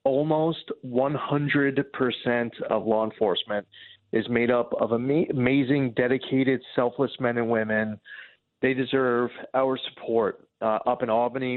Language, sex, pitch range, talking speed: English, male, 115-135 Hz, 120 wpm